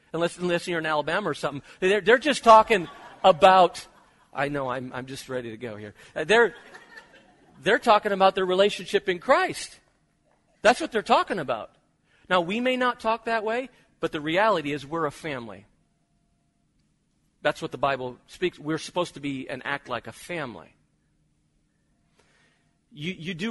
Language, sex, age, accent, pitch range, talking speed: English, male, 40-59, American, 140-205 Hz, 165 wpm